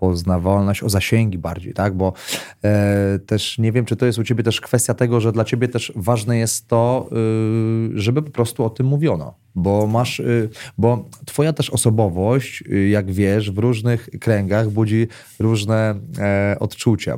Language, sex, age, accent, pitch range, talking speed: Polish, male, 30-49, native, 100-115 Hz, 170 wpm